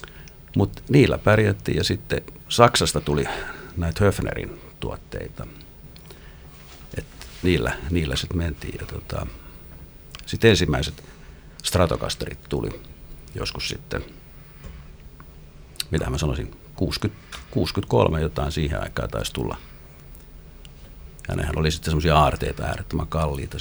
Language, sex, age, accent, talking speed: English, male, 50-69, Finnish, 100 wpm